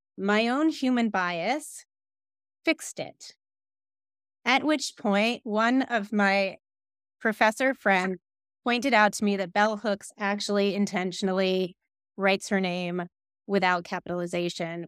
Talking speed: 115 wpm